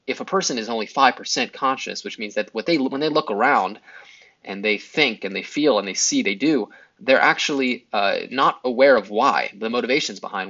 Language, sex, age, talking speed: English, male, 20-39, 200 wpm